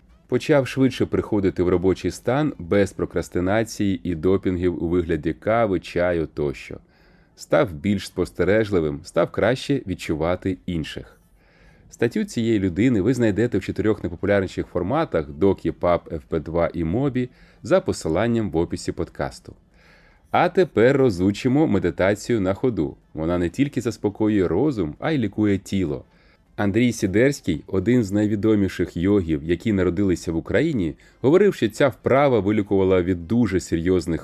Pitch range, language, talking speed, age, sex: 90-115 Hz, Ukrainian, 130 wpm, 30-49, male